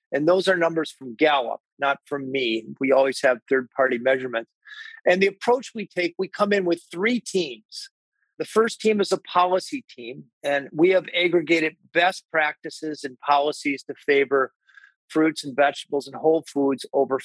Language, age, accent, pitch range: English, 40-59, American, 140-180 Hz